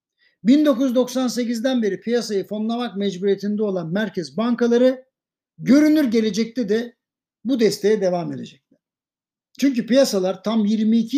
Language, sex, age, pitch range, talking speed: Turkish, male, 60-79, 185-245 Hz, 100 wpm